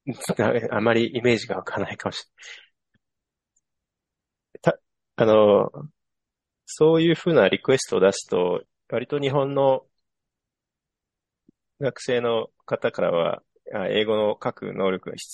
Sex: male